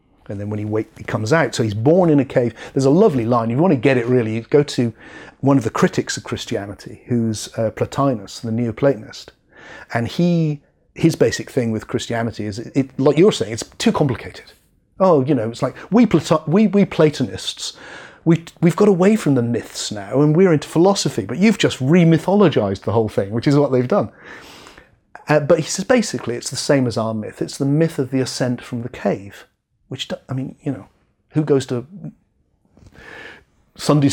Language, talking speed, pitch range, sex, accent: English, 205 wpm, 120-160 Hz, male, British